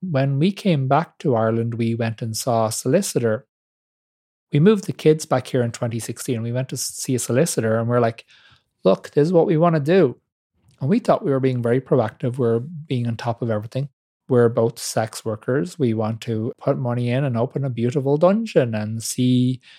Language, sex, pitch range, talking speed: English, male, 115-150 Hz, 205 wpm